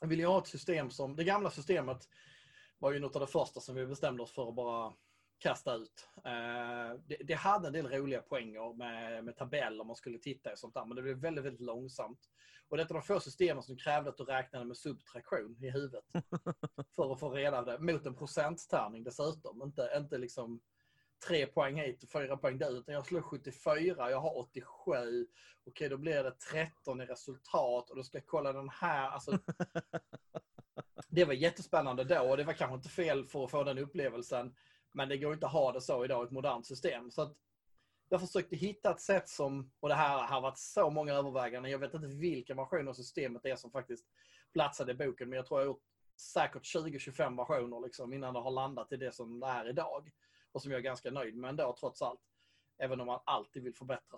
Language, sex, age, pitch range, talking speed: Swedish, male, 30-49, 125-155 Hz, 215 wpm